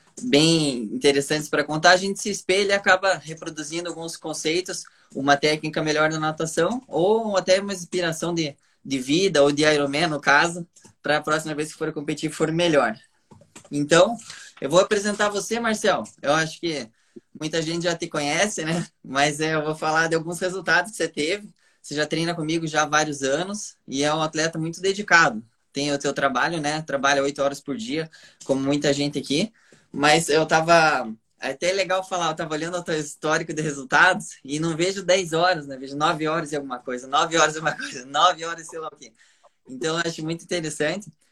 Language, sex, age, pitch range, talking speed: Portuguese, male, 20-39, 145-175 Hz, 200 wpm